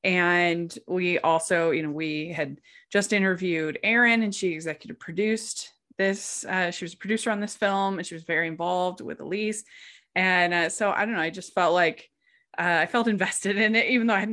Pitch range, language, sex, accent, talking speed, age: 160-220 Hz, English, female, American, 210 wpm, 20-39